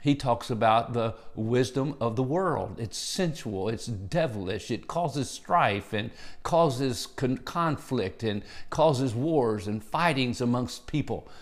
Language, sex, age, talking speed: English, male, 50-69, 130 wpm